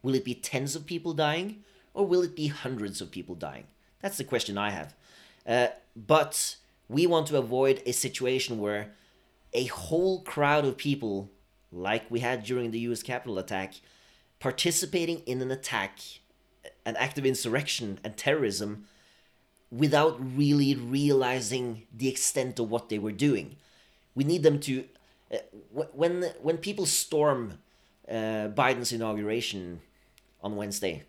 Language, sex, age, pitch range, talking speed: English, male, 30-49, 105-145 Hz, 145 wpm